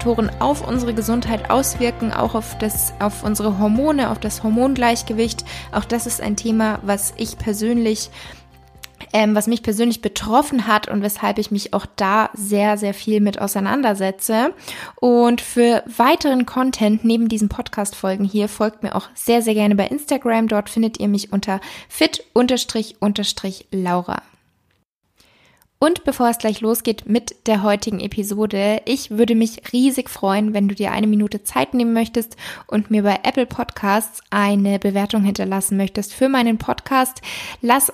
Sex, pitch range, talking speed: female, 205-235 Hz, 150 wpm